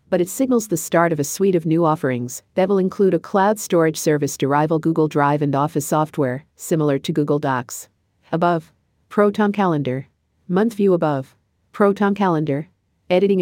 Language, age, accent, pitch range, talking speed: English, 50-69, American, 140-180 Hz, 170 wpm